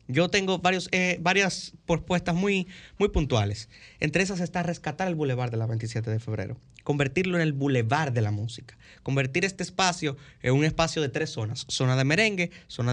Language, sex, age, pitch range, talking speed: Spanish, male, 30-49, 130-170 Hz, 185 wpm